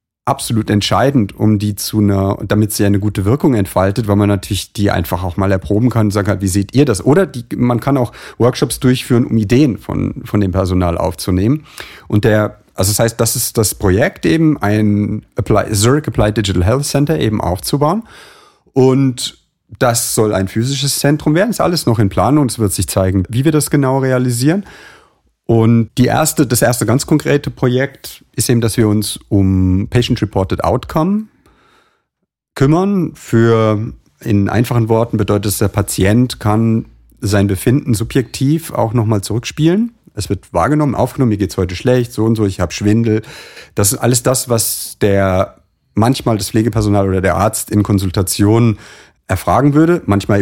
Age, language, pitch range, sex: 40-59, German, 100-130 Hz, male